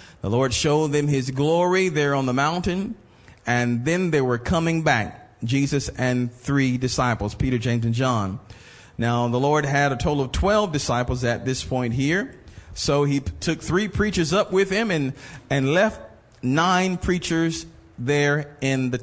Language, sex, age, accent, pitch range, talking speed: English, male, 40-59, American, 120-165 Hz, 165 wpm